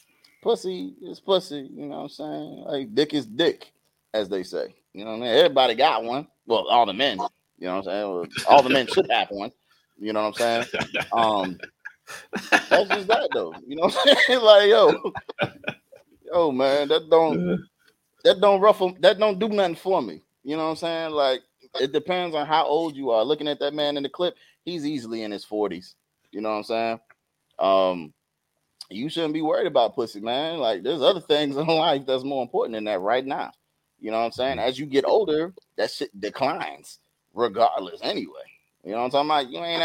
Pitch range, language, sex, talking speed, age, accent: 115-165 Hz, English, male, 210 wpm, 30-49, American